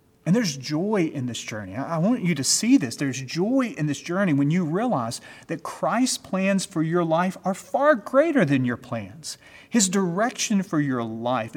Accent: American